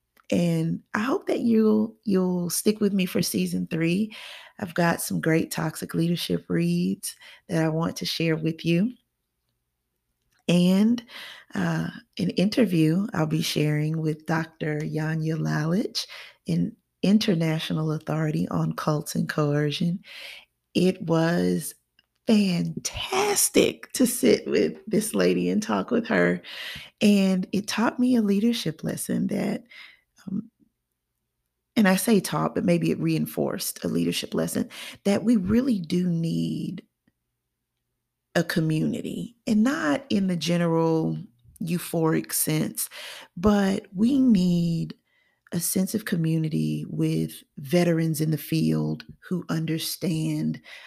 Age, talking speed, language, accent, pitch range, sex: 30-49, 120 wpm, English, American, 155-205 Hz, female